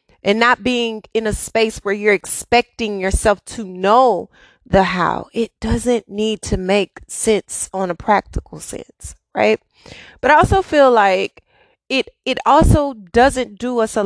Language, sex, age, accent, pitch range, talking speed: English, female, 30-49, American, 175-235 Hz, 160 wpm